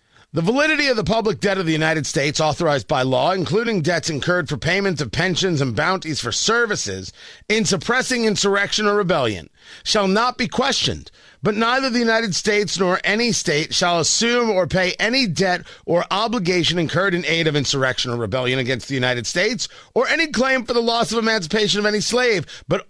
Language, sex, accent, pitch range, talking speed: English, male, American, 140-210 Hz, 190 wpm